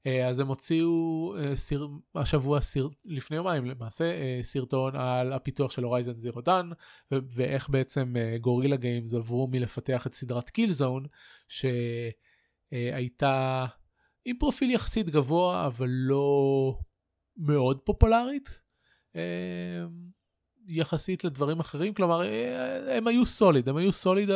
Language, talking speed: Hebrew, 110 wpm